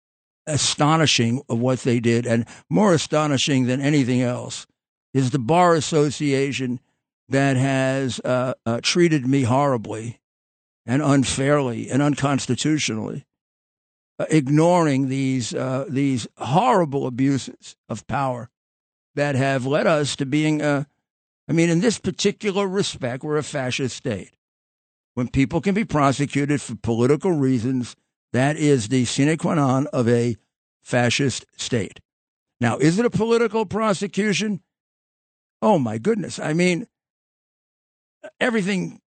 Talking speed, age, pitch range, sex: 125 wpm, 50-69, 130-185 Hz, male